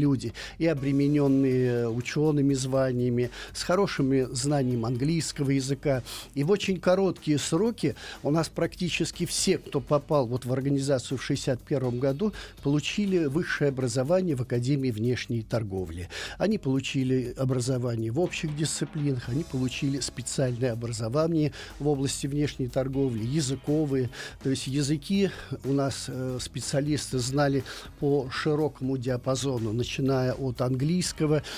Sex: male